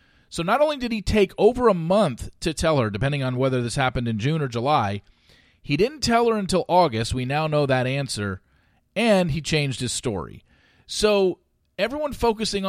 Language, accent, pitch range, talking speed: English, American, 125-185 Hz, 190 wpm